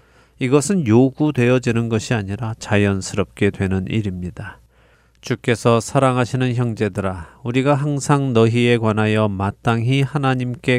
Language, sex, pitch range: Korean, male, 100-125 Hz